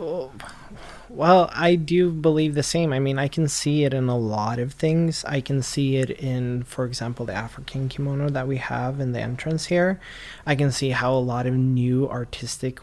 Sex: male